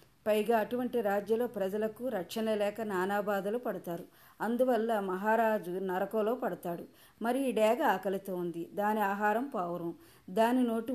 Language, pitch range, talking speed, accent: Telugu, 190-235 Hz, 120 wpm, native